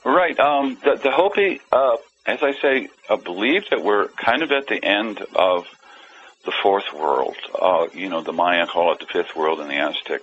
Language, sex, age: English, male, 60-79